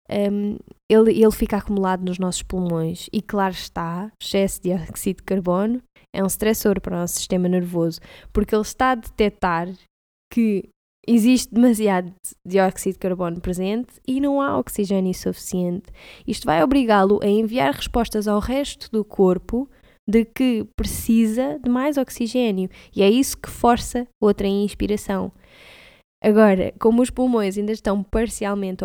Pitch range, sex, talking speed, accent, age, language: 195-235 Hz, female, 150 wpm, Brazilian, 10-29, Portuguese